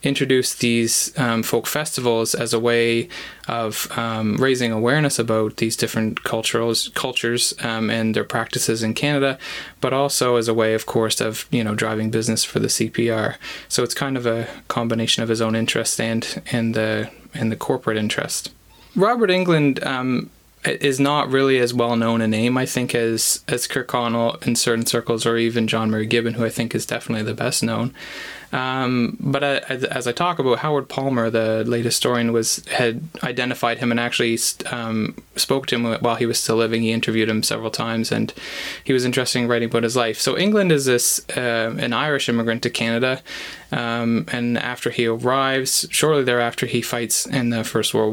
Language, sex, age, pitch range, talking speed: English, male, 20-39, 115-130 Hz, 190 wpm